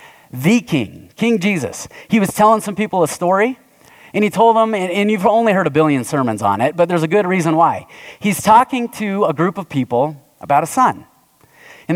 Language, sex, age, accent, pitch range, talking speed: English, male, 30-49, American, 140-195 Hz, 205 wpm